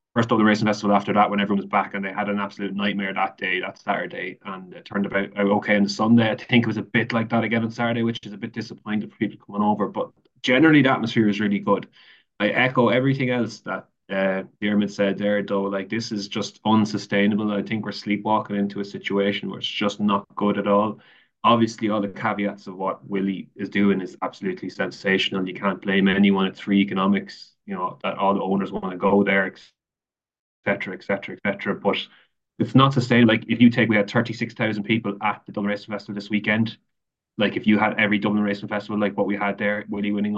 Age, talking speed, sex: 20-39, 235 wpm, male